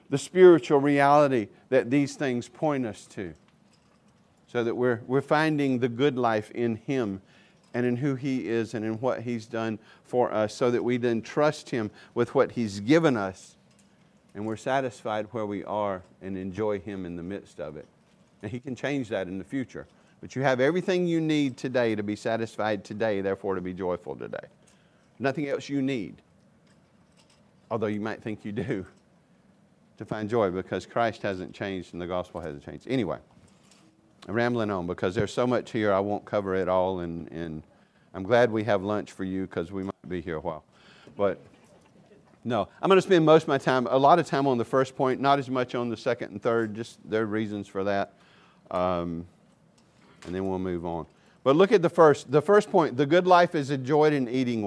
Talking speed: 205 wpm